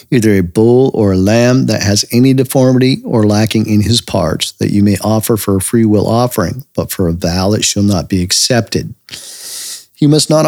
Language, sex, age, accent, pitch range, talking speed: English, male, 50-69, American, 100-125 Hz, 205 wpm